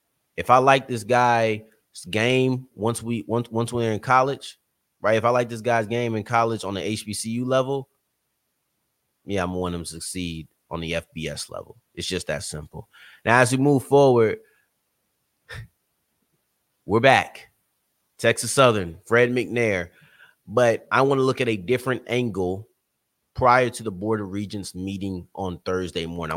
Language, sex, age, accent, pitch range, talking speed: English, male, 30-49, American, 95-120 Hz, 155 wpm